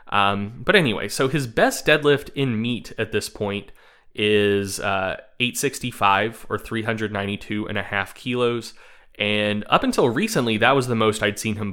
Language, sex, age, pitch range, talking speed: English, male, 20-39, 100-125 Hz, 165 wpm